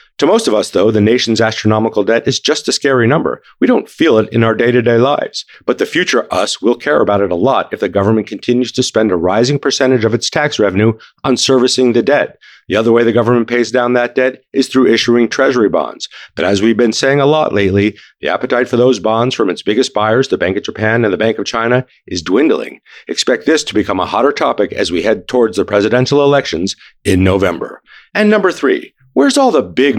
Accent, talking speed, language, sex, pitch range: American, 230 wpm, English, male, 105-135 Hz